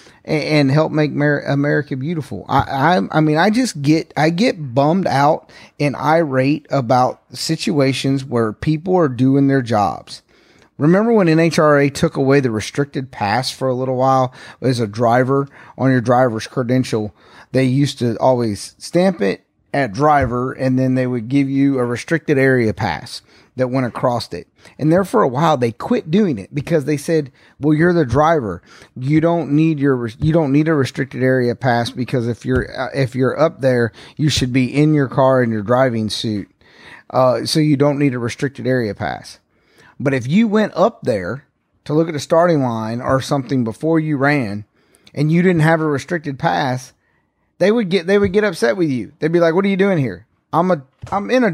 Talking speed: 195 wpm